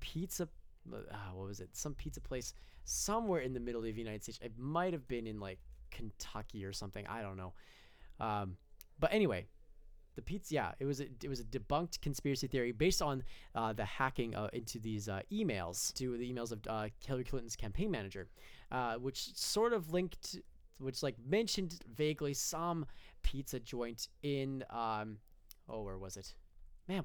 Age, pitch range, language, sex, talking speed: 20-39, 110-155 Hz, English, male, 175 wpm